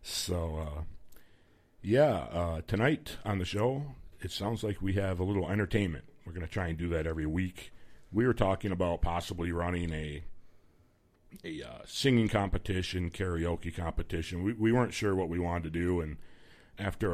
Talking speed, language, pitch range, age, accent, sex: 170 wpm, English, 80-100 Hz, 50-69, American, male